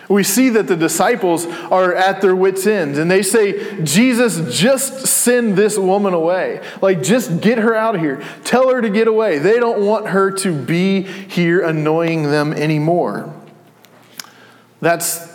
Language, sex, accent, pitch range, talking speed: English, male, American, 155-195 Hz, 165 wpm